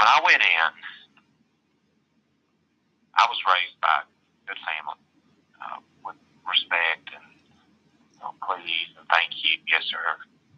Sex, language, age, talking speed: male, English, 40-59, 120 wpm